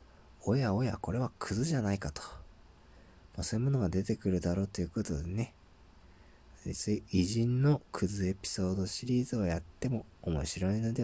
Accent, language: native, Japanese